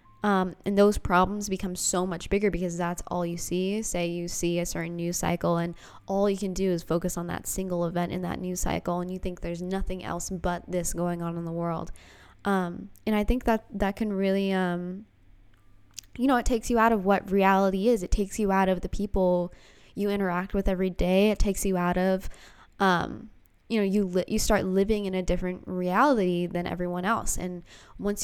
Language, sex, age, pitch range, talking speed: English, female, 10-29, 170-200 Hz, 215 wpm